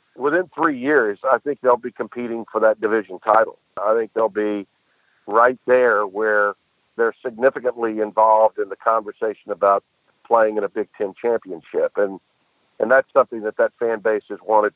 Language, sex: English, male